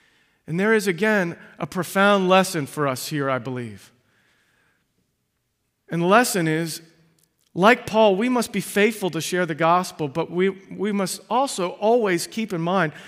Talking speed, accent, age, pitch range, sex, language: 160 wpm, American, 40-59, 145-195 Hz, male, English